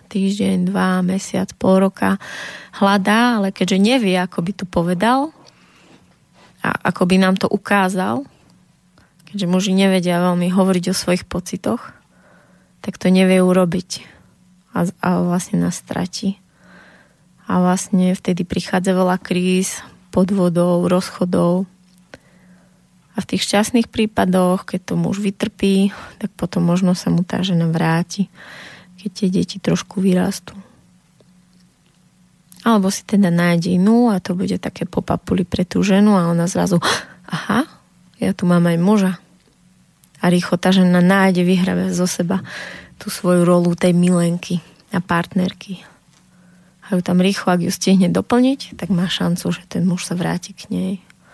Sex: female